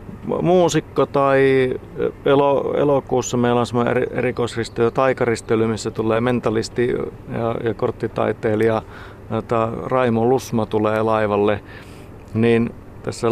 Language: Finnish